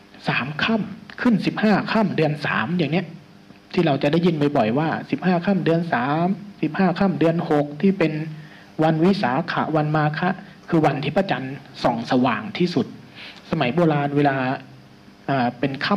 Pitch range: 135-175 Hz